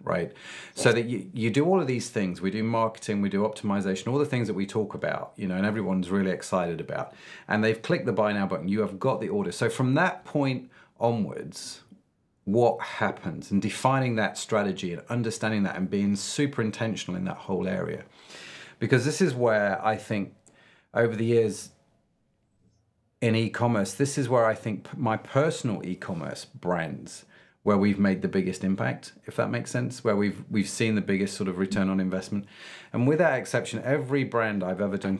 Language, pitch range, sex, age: English, 95-120 Hz, male, 40-59